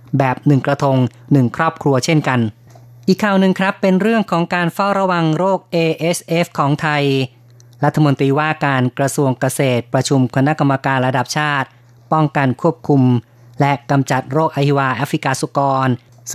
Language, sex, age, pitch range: Thai, female, 20-39, 130-150 Hz